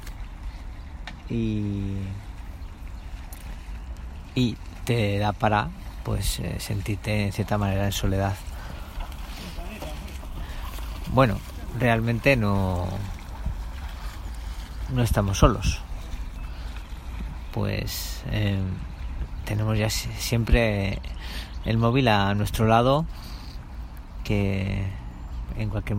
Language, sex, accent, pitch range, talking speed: Spanish, male, Spanish, 80-110 Hz, 70 wpm